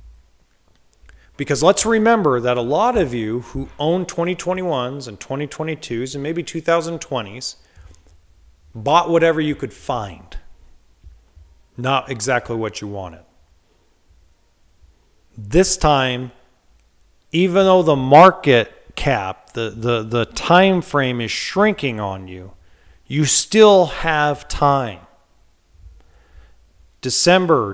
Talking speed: 100 wpm